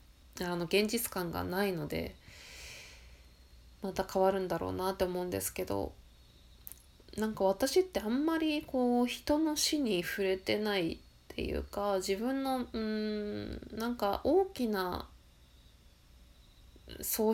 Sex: female